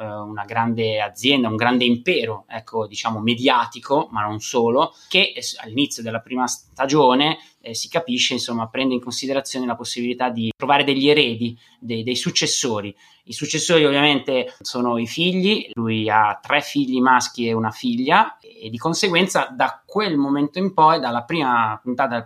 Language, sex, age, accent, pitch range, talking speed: Italian, male, 20-39, native, 115-145 Hz, 160 wpm